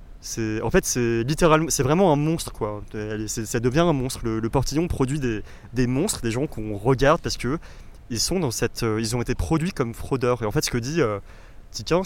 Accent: French